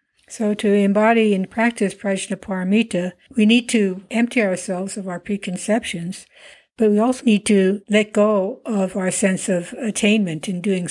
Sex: female